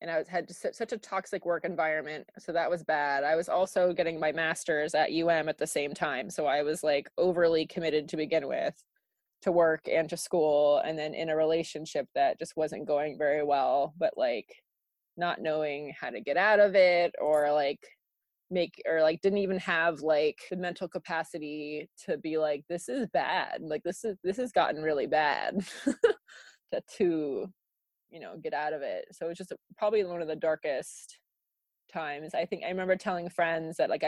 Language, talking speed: English, 195 wpm